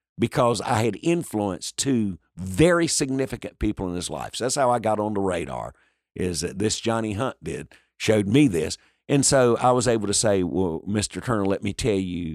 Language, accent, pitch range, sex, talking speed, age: English, American, 95-130 Hz, male, 205 wpm, 50-69